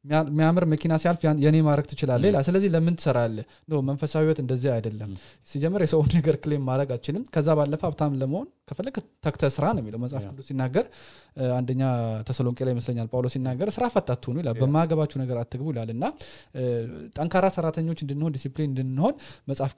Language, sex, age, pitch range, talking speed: English, male, 20-39, 125-170 Hz, 160 wpm